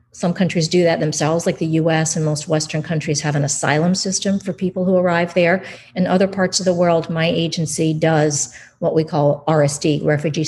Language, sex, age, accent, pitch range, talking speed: English, female, 50-69, American, 150-175 Hz, 200 wpm